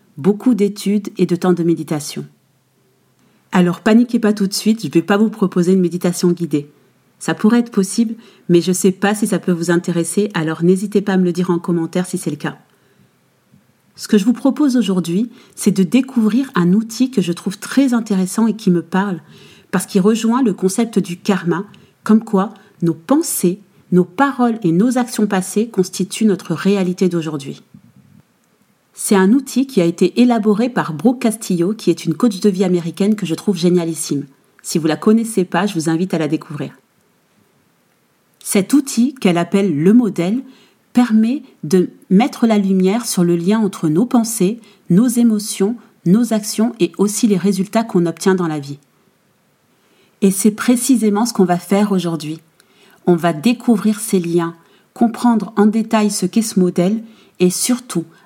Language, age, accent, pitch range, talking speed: French, 40-59, French, 175-220 Hz, 180 wpm